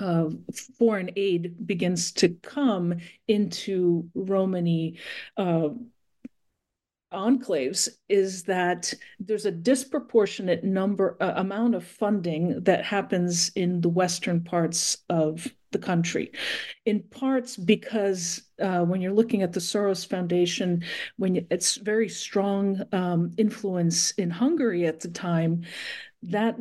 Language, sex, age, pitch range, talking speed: English, female, 50-69, 180-220 Hz, 120 wpm